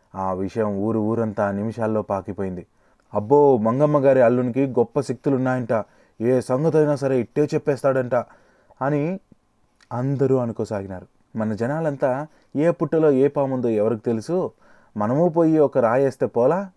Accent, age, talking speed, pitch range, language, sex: native, 30-49, 120 wpm, 105-135 Hz, Telugu, male